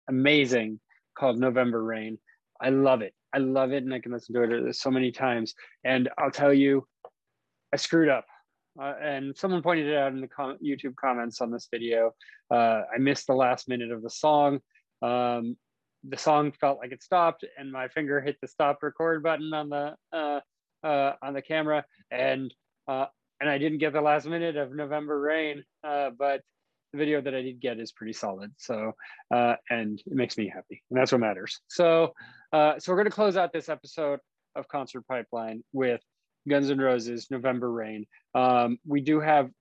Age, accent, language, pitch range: 20-39, American, English, 130-150 Hz